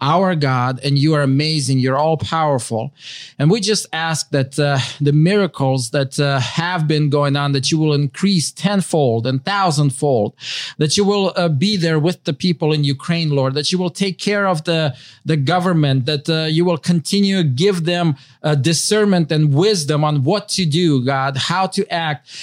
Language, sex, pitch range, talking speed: English, male, 145-185 Hz, 190 wpm